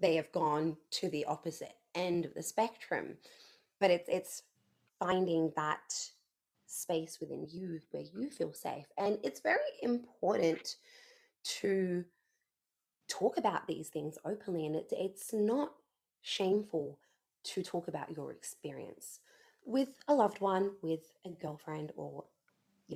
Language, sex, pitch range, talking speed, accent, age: English, female, 160-225 Hz, 135 wpm, Australian, 20-39